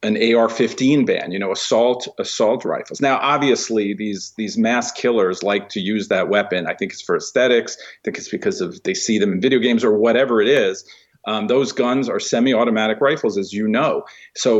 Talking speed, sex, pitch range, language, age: 200 wpm, male, 110-140 Hz, English, 40-59